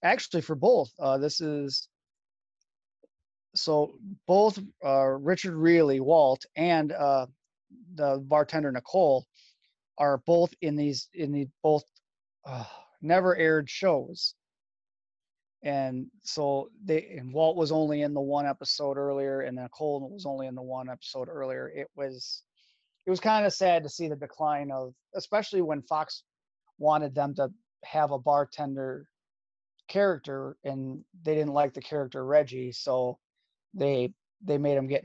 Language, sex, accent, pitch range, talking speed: English, male, American, 135-160 Hz, 145 wpm